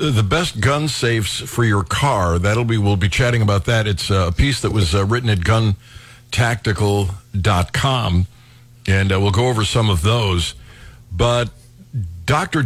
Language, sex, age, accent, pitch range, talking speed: English, male, 50-69, American, 100-125 Hz, 145 wpm